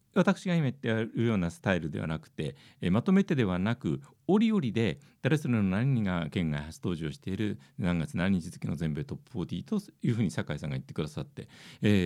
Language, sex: Japanese, male